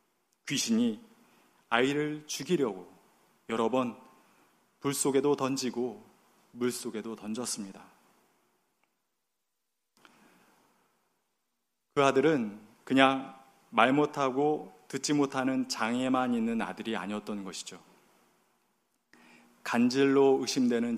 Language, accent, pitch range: Korean, native, 115-150 Hz